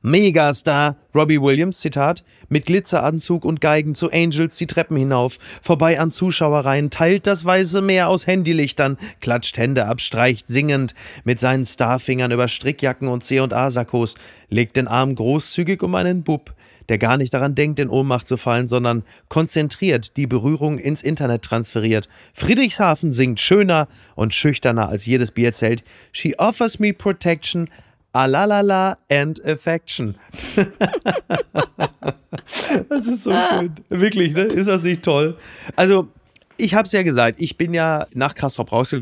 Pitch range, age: 120-170 Hz, 30-49